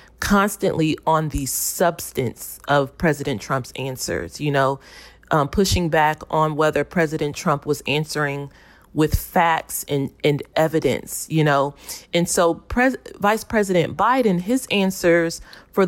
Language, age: English, 30-49